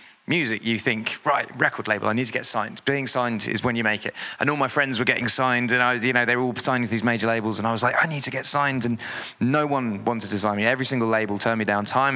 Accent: British